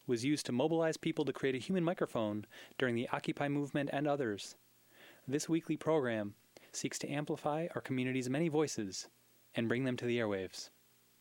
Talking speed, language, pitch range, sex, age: 170 wpm, English, 110-140 Hz, male, 20-39